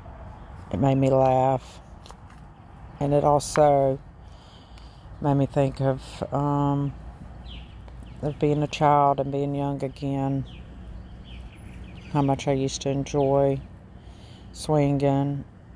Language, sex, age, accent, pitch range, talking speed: English, female, 40-59, American, 115-150 Hz, 105 wpm